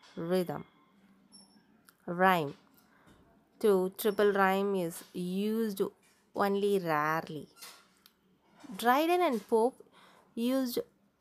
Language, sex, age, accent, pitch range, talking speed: Tamil, female, 20-39, native, 185-235 Hz, 70 wpm